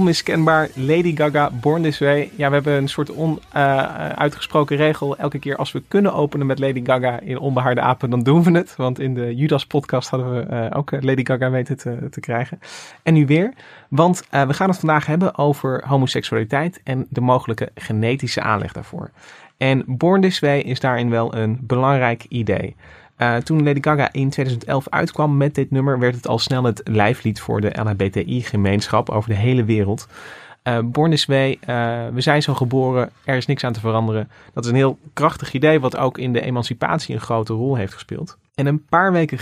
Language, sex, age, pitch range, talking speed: Dutch, male, 30-49, 120-150 Hz, 200 wpm